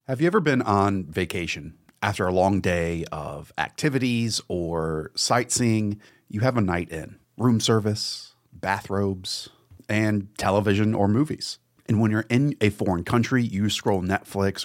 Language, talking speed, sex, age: English, 150 wpm, male, 30-49